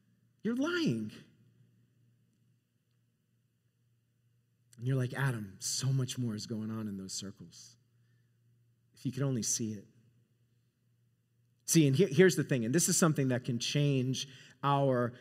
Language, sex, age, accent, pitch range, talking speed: English, male, 30-49, American, 120-180 Hz, 140 wpm